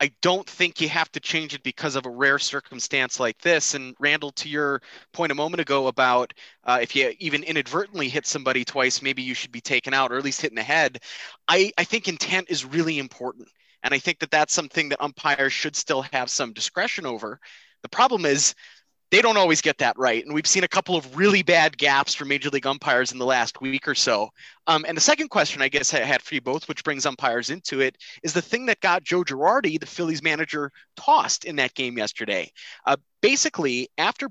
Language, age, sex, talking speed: English, 30-49, male, 225 wpm